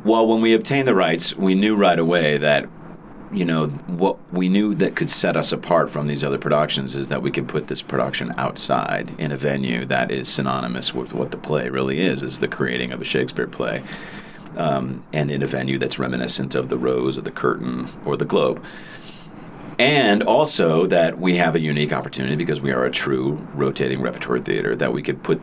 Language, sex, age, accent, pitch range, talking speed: English, male, 40-59, American, 65-90 Hz, 210 wpm